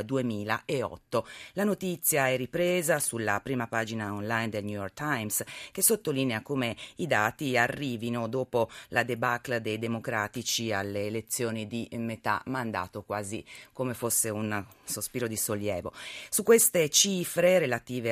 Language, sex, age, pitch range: Italian, female, 40-59, 105-130 Hz